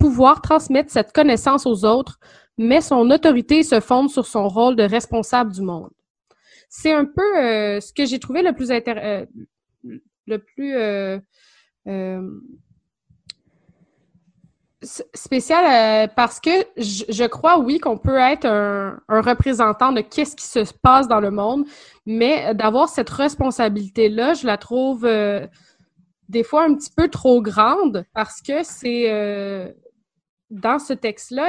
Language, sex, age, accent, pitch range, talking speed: French, female, 20-39, Canadian, 210-265 Hz, 150 wpm